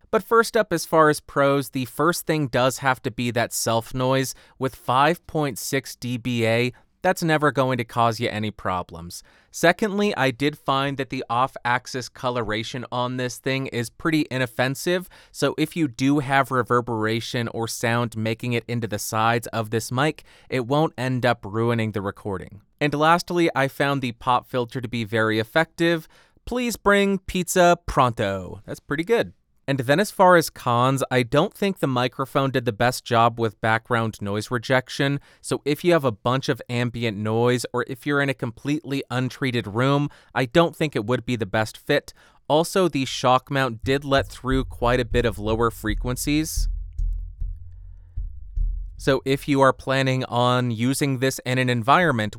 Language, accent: English, American